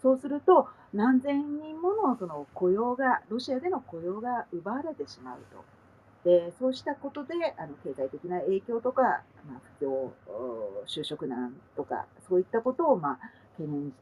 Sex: female